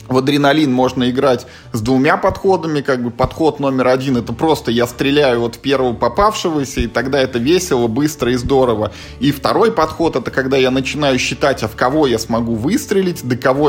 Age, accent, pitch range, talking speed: 20-39, native, 120-145 Hz, 190 wpm